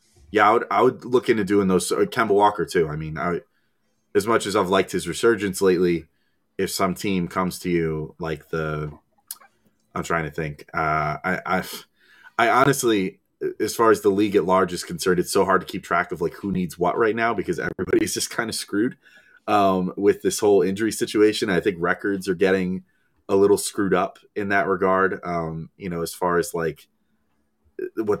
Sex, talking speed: male, 200 wpm